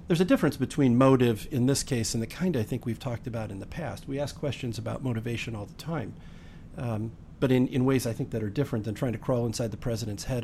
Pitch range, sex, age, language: 115-145 Hz, male, 40-59, English